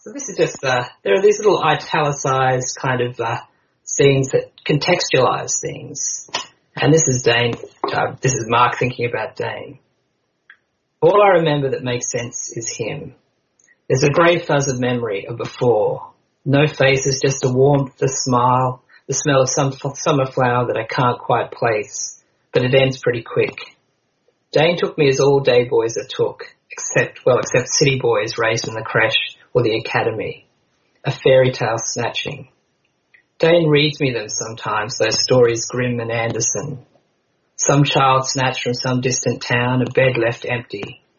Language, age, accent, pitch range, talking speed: English, 40-59, Australian, 125-155 Hz, 165 wpm